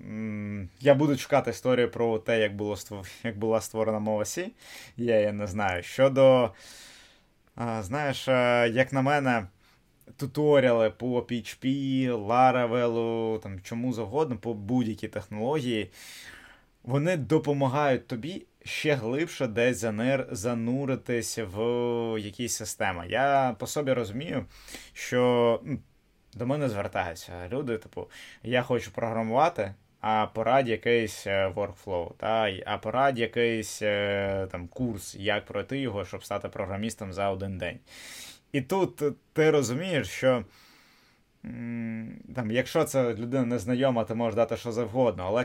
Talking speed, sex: 115 wpm, male